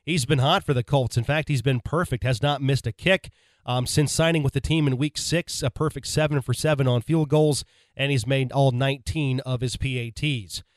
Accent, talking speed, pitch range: American, 230 wpm, 130-150 Hz